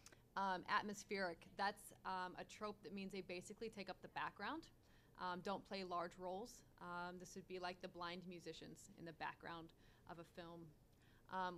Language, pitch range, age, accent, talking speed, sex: English, 170-200 Hz, 20-39, American, 175 wpm, female